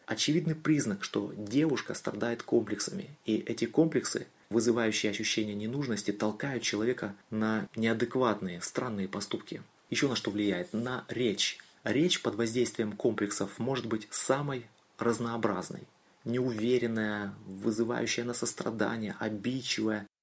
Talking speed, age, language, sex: 110 wpm, 30-49, Russian, male